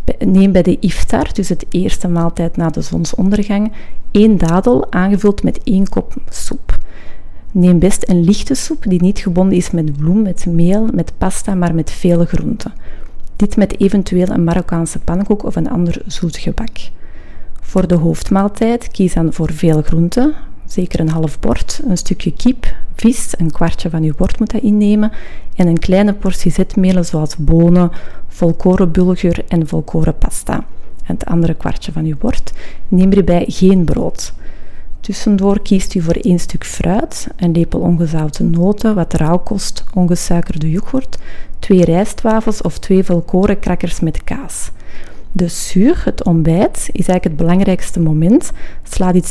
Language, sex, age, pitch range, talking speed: Dutch, female, 40-59, 165-200 Hz, 155 wpm